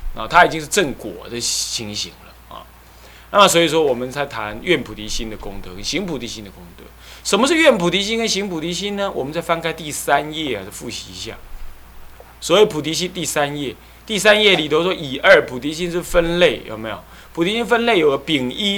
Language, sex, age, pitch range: Chinese, male, 20-39, 115-185 Hz